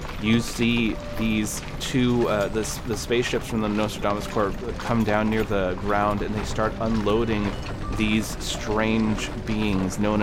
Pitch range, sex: 100-115 Hz, male